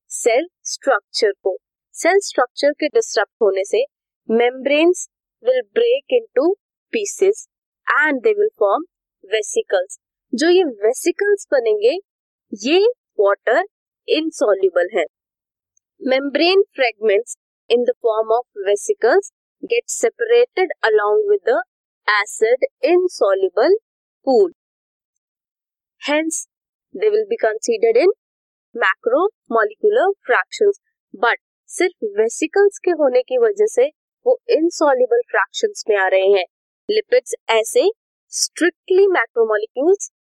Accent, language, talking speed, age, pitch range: Indian, English, 105 wpm, 20-39, 280-450 Hz